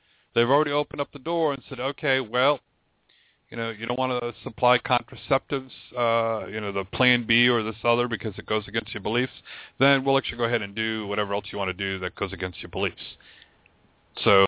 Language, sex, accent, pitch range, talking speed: English, male, American, 110-130 Hz, 215 wpm